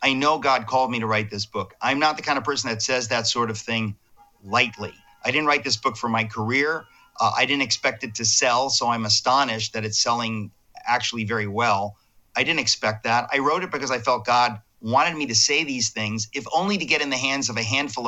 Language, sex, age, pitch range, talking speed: English, male, 40-59, 110-135 Hz, 240 wpm